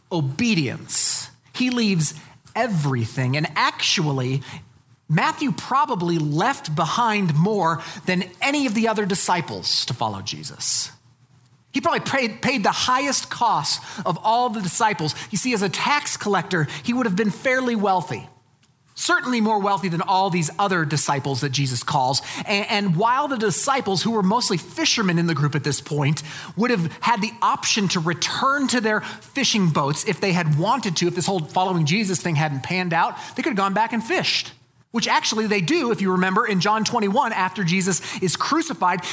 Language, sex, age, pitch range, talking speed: English, male, 30-49, 130-210 Hz, 175 wpm